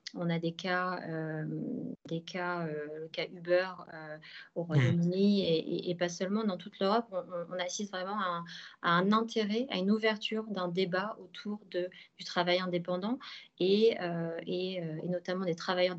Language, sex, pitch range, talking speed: French, female, 170-205 Hz, 180 wpm